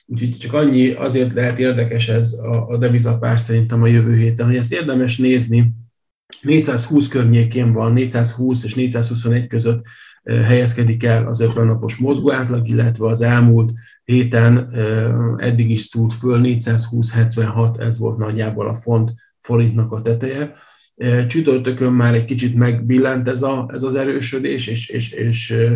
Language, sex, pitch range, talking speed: Hungarian, male, 115-125 Hz, 130 wpm